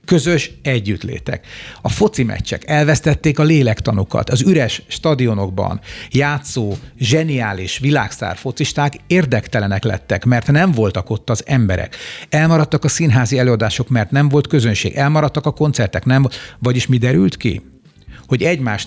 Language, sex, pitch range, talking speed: Hungarian, male, 110-135 Hz, 125 wpm